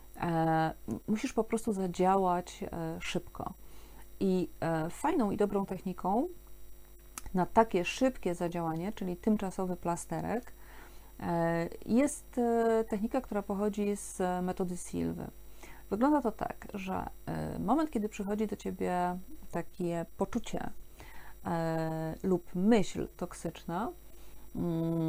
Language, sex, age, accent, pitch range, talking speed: Polish, female, 40-59, native, 175-215 Hz, 90 wpm